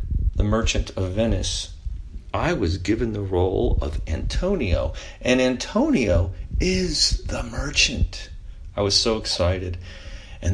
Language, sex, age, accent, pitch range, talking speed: English, male, 40-59, American, 80-100 Hz, 120 wpm